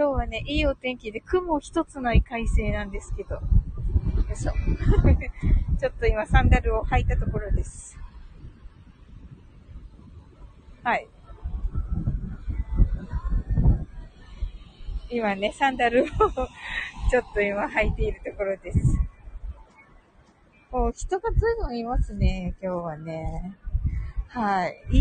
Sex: female